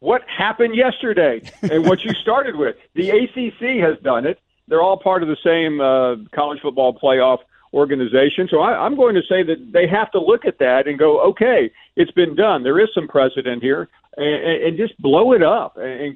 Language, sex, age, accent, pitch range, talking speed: English, male, 50-69, American, 135-210 Hz, 200 wpm